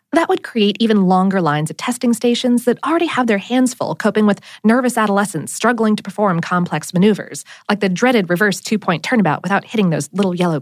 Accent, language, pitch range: American, English, 175-260 Hz